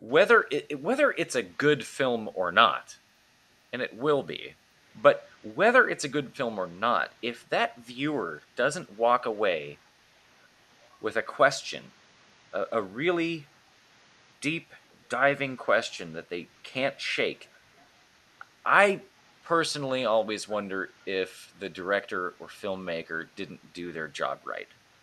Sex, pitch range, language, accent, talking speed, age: male, 95-145 Hz, English, American, 130 wpm, 30-49